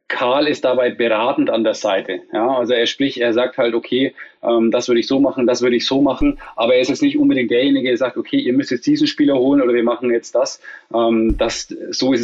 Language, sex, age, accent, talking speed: German, male, 20-39, German, 235 wpm